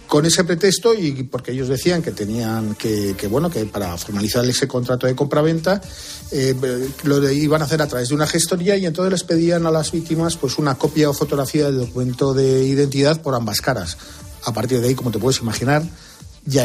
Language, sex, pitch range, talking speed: Spanish, male, 130-160 Hz, 205 wpm